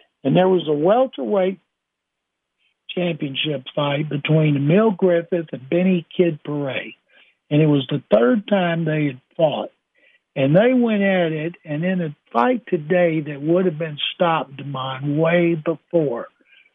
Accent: American